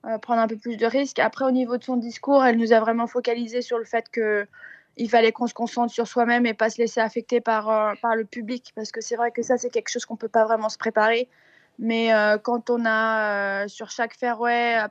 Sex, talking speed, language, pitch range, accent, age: female, 260 wpm, French, 220-245 Hz, French, 20-39